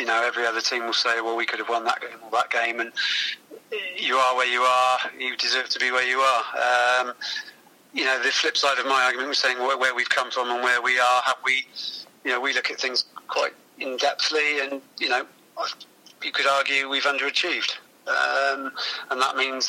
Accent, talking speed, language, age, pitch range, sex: British, 220 wpm, English, 30-49, 125-135 Hz, male